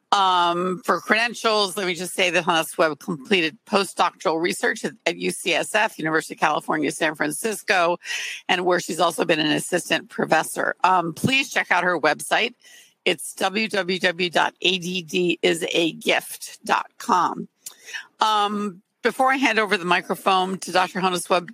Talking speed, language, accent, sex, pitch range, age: 130 wpm, English, American, female, 175-215 Hz, 50-69